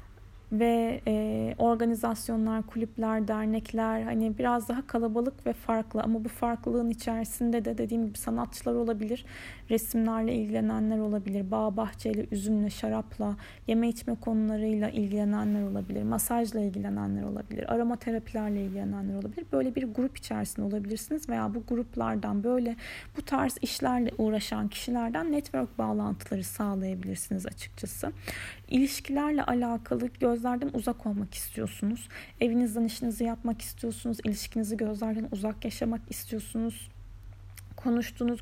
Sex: female